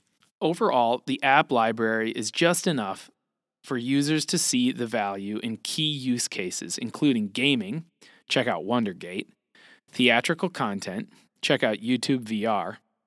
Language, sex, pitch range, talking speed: English, male, 110-145 Hz, 130 wpm